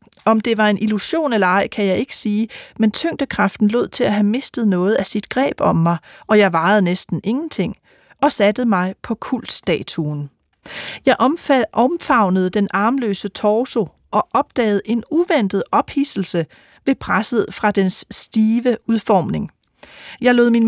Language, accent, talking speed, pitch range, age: Danish, native, 155 wpm, 190-245 Hz, 40-59